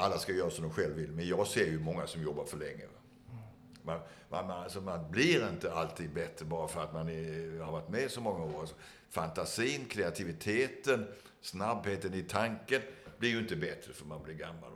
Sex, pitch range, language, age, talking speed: male, 80-105 Hz, Swedish, 60-79, 195 wpm